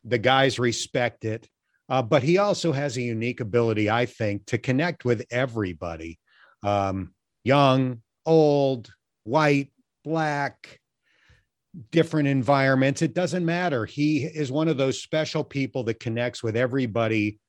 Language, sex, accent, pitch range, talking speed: English, male, American, 105-135 Hz, 135 wpm